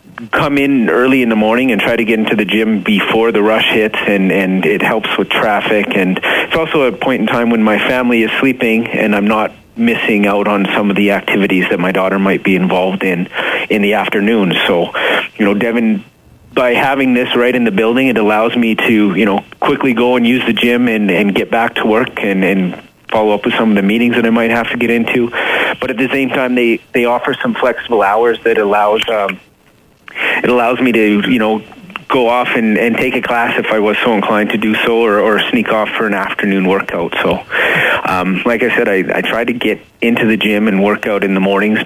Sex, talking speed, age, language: male, 230 wpm, 30-49, English